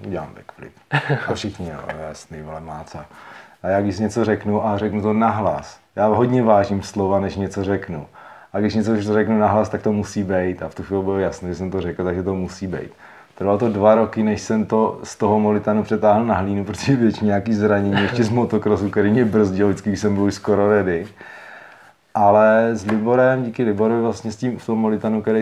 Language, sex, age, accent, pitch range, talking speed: Czech, male, 30-49, native, 95-110 Hz, 205 wpm